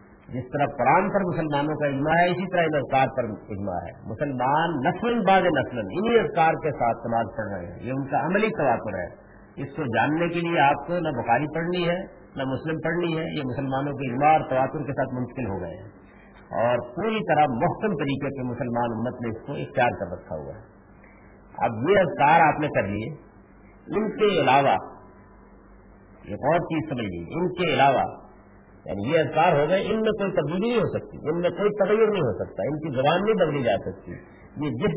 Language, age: Urdu, 50-69